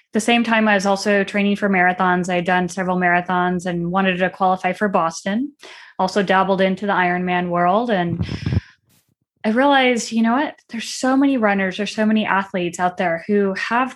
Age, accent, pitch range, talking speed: 20-39, American, 190-235 Hz, 190 wpm